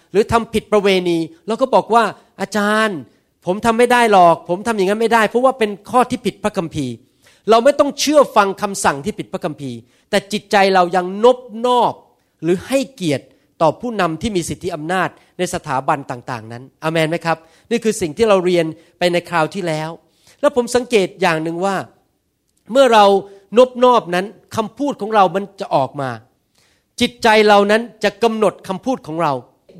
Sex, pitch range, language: male, 170-230 Hz, Thai